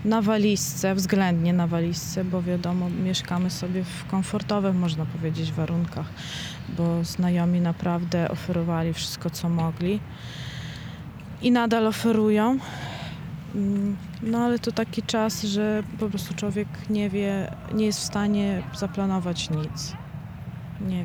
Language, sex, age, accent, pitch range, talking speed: Polish, female, 20-39, native, 170-195 Hz, 120 wpm